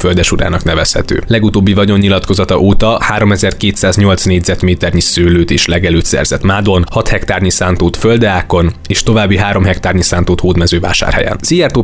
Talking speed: 120 wpm